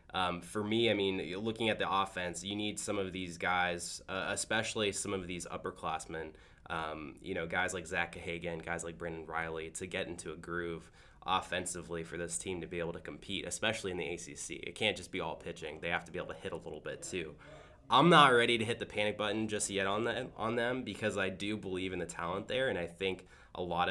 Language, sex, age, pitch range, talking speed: English, male, 20-39, 85-100 Hz, 235 wpm